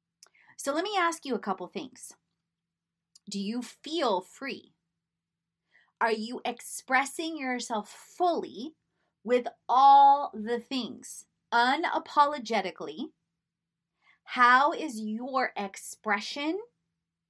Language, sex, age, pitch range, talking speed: English, female, 30-49, 170-255 Hz, 90 wpm